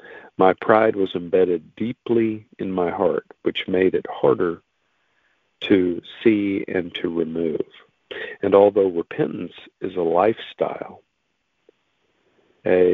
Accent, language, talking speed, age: American, English, 110 wpm, 50-69